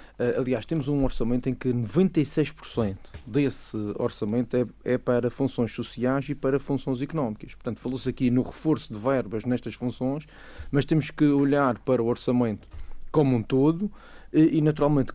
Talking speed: 155 wpm